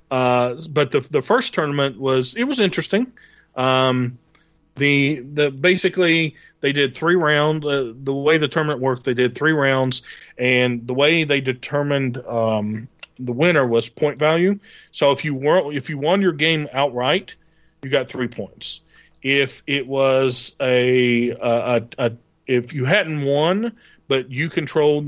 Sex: male